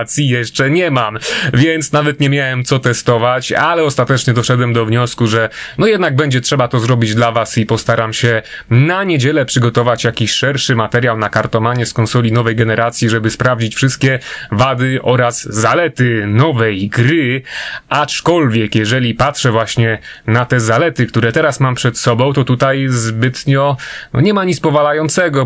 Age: 30-49